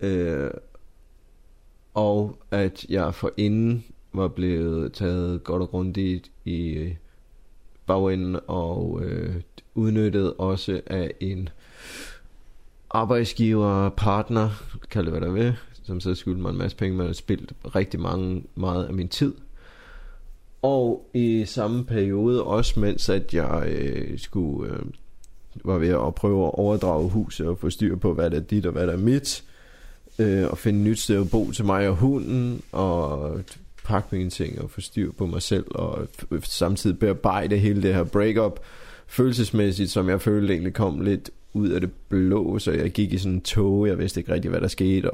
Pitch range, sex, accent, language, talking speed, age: 90-110 Hz, male, native, Danish, 160 wpm, 30-49